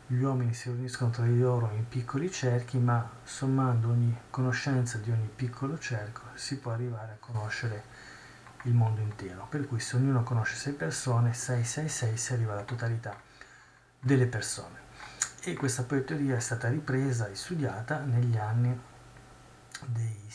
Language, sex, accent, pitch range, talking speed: Italian, male, native, 115-130 Hz, 160 wpm